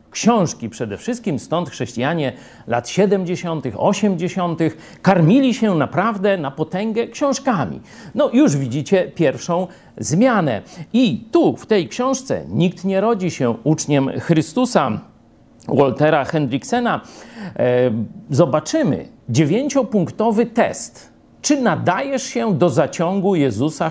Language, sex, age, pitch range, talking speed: Polish, male, 50-69, 135-210 Hz, 105 wpm